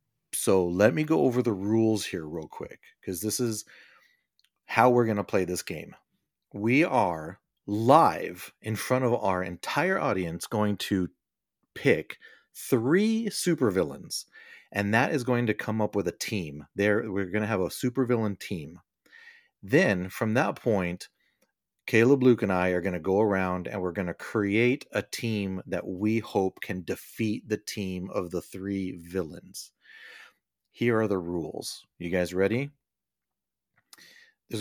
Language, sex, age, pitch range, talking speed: English, male, 40-59, 95-120 Hz, 160 wpm